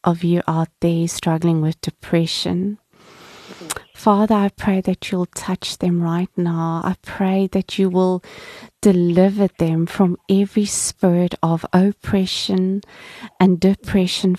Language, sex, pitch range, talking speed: Dutch, female, 175-200 Hz, 125 wpm